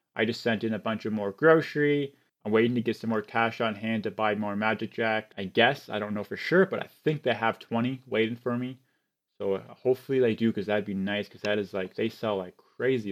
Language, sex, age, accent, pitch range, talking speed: English, male, 20-39, American, 105-130 Hz, 250 wpm